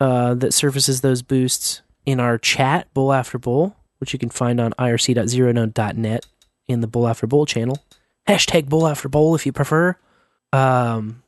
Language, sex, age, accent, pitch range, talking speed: English, male, 20-39, American, 120-160 Hz, 165 wpm